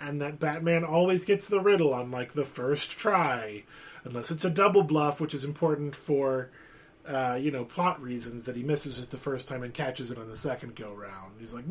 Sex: male